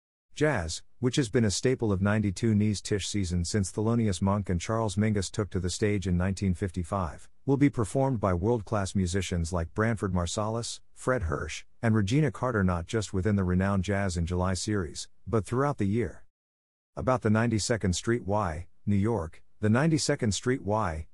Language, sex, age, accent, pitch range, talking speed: English, male, 50-69, American, 90-115 Hz, 175 wpm